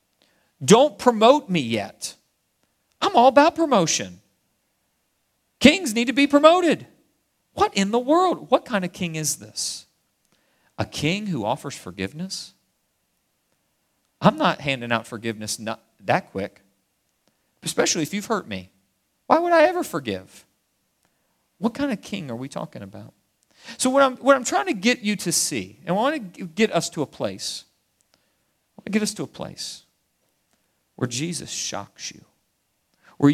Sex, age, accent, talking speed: male, 40-59, American, 155 wpm